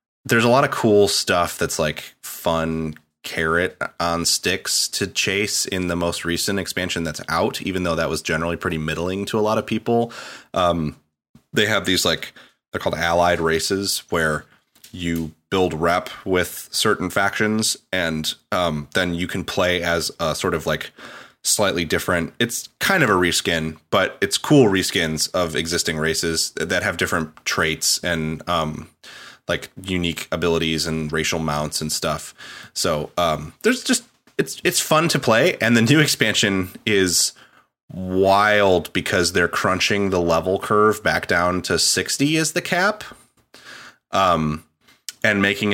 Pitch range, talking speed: 80-100 Hz, 155 wpm